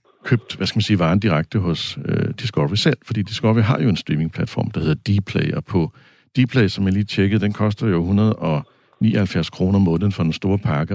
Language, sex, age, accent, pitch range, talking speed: Danish, male, 60-79, native, 90-110 Hz, 205 wpm